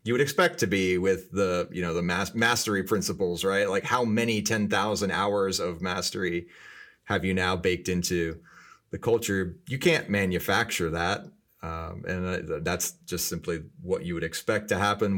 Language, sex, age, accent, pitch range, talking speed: English, male, 30-49, American, 95-110 Hz, 175 wpm